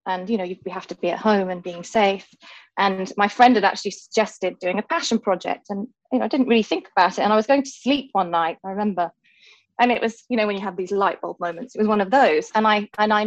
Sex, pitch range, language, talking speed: female, 195-240 Hz, English, 280 wpm